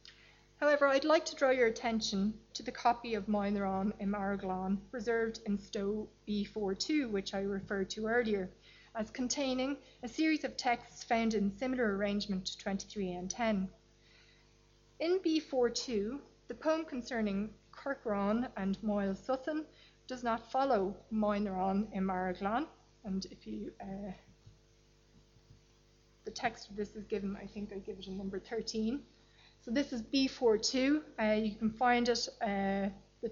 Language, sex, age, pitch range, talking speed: English, female, 30-49, 200-245 Hz, 145 wpm